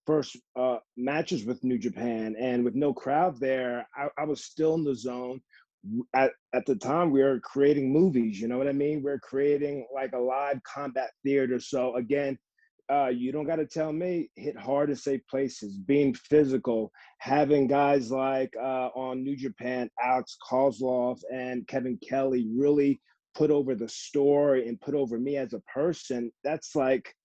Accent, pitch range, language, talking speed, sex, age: American, 125-145 Hz, English, 180 wpm, male, 30-49